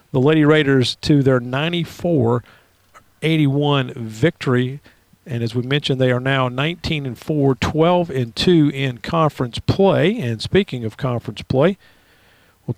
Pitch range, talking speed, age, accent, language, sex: 130-160 Hz, 115 wpm, 50-69, American, English, male